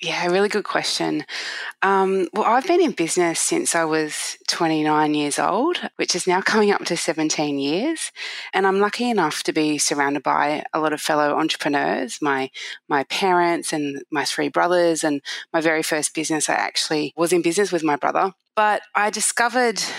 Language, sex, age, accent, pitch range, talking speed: English, female, 20-39, Australian, 160-205 Hz, 180 wpm